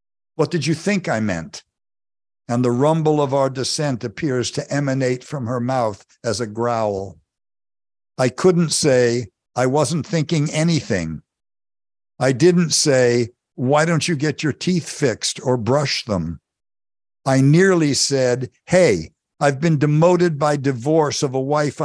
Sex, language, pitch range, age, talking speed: male, English, 120-150 Hz, 60-79, 145 wpm